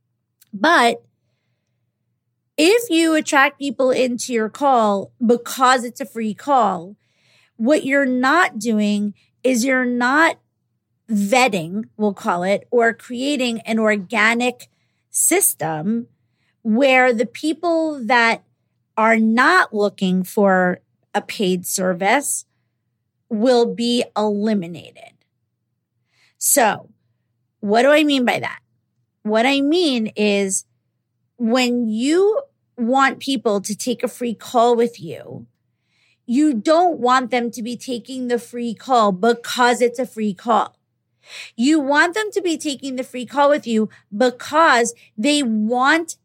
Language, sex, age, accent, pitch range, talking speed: English, female, 40-59, American, 205-265 Hz, 120 wpm